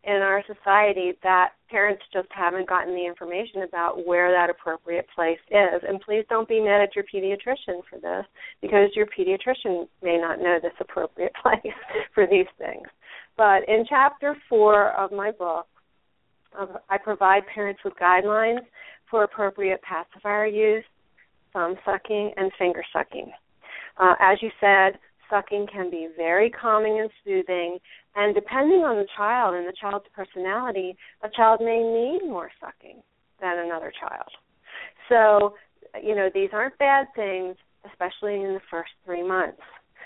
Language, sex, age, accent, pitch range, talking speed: English, female, 40-59, American, 180-215 Hz, 150 wpm